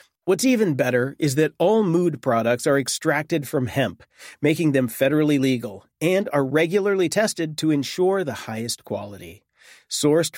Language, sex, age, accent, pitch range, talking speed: English, male, 40-59, American, 135-190 Hz, 150 wpm